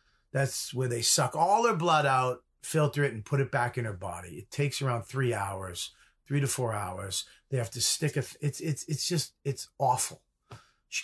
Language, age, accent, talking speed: English, 40-59, American, 205 wpm